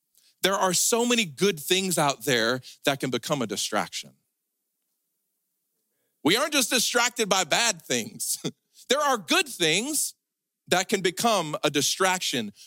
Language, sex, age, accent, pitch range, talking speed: English, male, 40-59, American, 130-205 Hz, 135 wpm